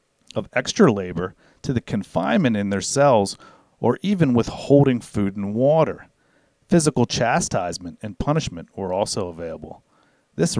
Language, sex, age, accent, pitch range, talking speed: English, male, 40-59, American, 100-130 Hz, 130 wpm